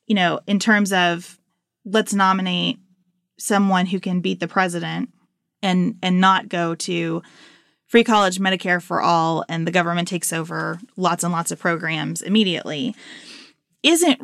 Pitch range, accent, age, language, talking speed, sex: 180-235 Hz, American, 20-39, English, 150 wpm, female